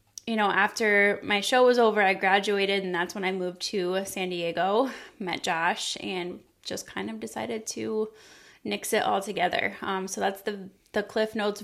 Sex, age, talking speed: female, 20-39, 185 wpm